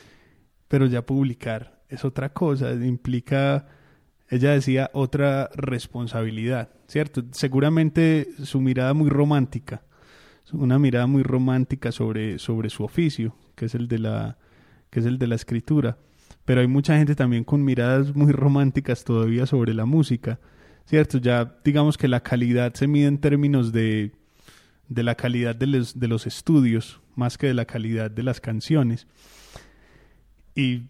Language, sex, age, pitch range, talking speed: Spanish, male, 20-39, 120-140 Hz, 150 wpm